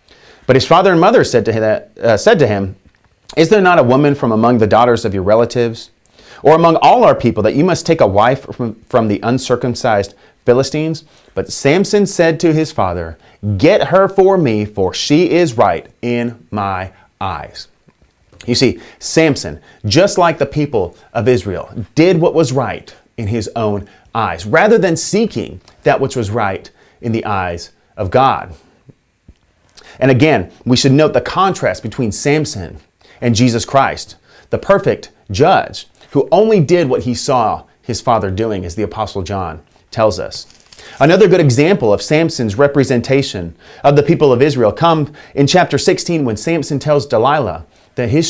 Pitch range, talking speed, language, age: 105-155 Hz, 165 wpm, English, 30-49